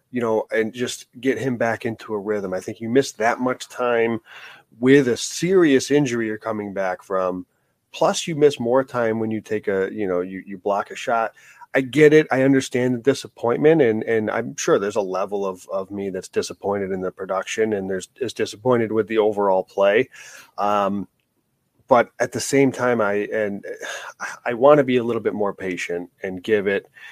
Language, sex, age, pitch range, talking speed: English, male, 30-49, 100-120 Hz, 200 wpm